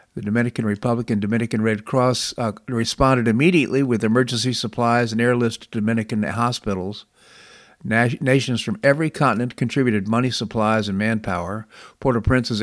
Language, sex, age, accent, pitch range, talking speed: English, male, 50-69, American, 110-125 Hz, 135 wpm